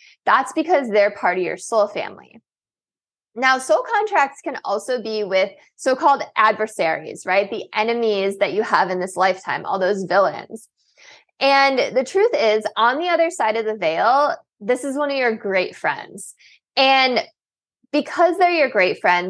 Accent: American